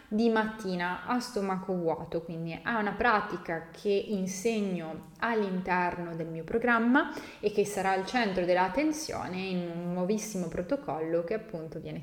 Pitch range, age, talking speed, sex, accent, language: 180-215 Hz, 20-39, 140 wpm, female, native, Italian